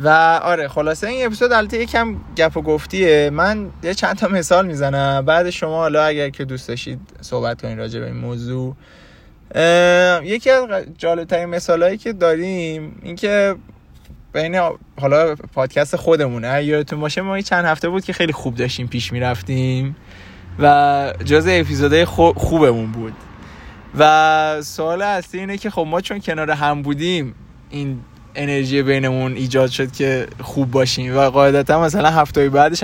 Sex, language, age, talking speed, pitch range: male, Persian, 20-39, 155 wpm, 130-165 Hz